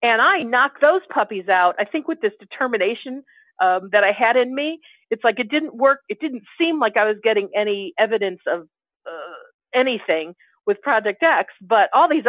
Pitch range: 200-275 Hz